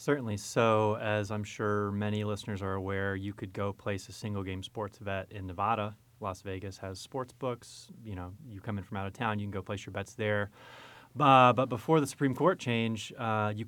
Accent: American